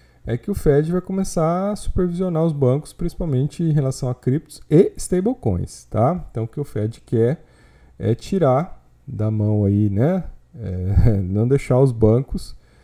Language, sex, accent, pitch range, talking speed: Portuguese, male, Brazilian, 105-155 Hz, 165 wpm